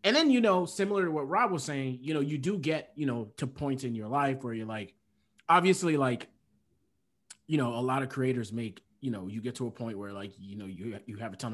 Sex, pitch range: male, 115-155 Hz